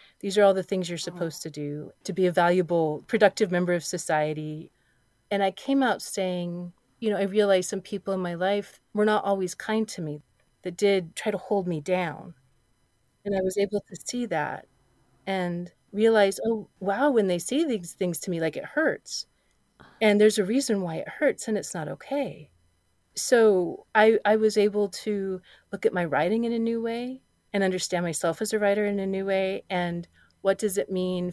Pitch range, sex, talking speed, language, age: 170-200 Hz, female, 200 wpm, English, 30-49